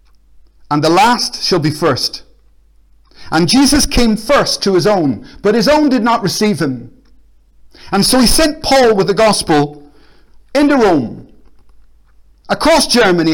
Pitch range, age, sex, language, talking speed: 155-230 Hz, 50-69, male, English, 145 wpm